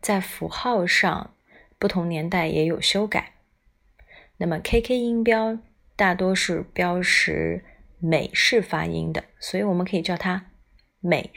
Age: 20-39